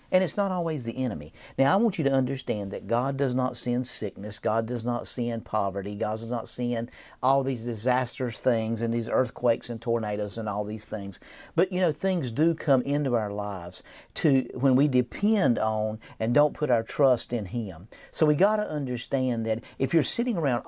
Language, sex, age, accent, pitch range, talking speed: English, male, 50-69, American, 115-150 Hz, 205 wpm